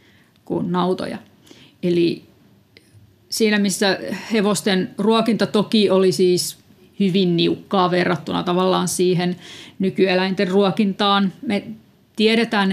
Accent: native